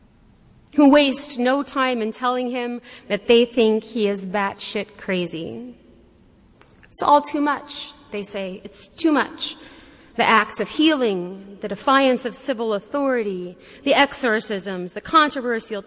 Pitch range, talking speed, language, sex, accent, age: 195-270 Hz, 135 wpm, English, female, American, 30-49